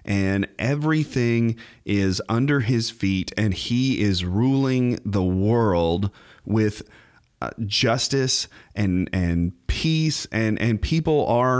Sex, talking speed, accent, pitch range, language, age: male, 115 wpm, American, 95-120 Hz, English, 30-49